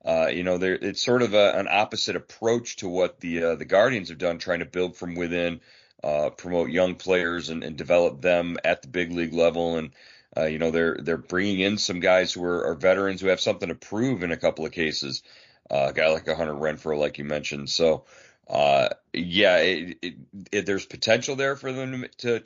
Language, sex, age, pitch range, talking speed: English, male, 40-59, 85-105 Hz, 220 wpm